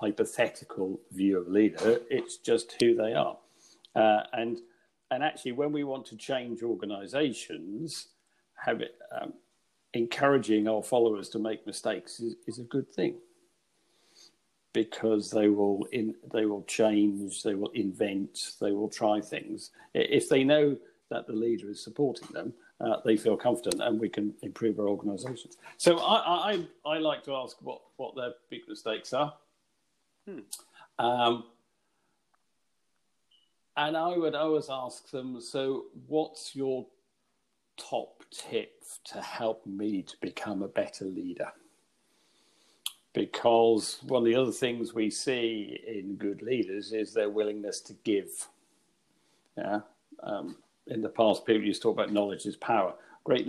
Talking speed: 145 wpm